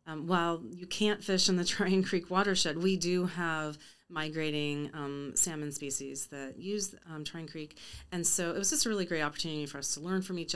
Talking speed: 210 wpm